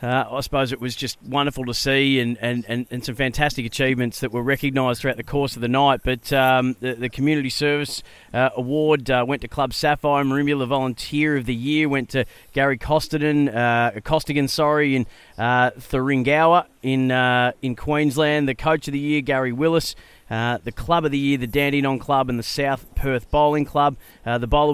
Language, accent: English, Australian